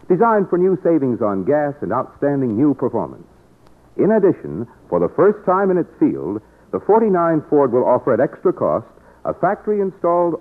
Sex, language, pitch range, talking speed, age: male, English, 115-180 Hz, 165 wpm, 60-79